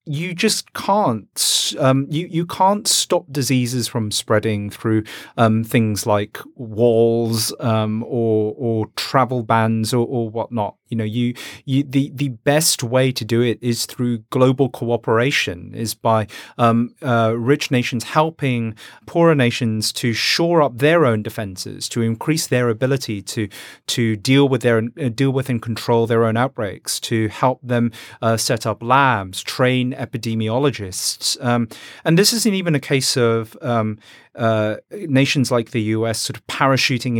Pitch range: 115-135 Hz